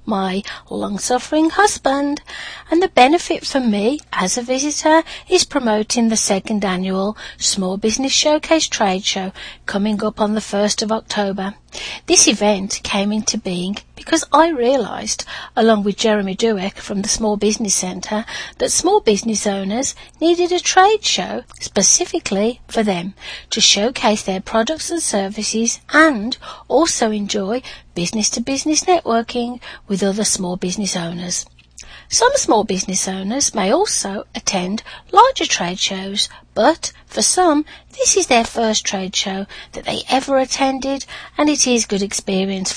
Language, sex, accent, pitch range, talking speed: English, female, British, 200-275 Hz, 140 wpm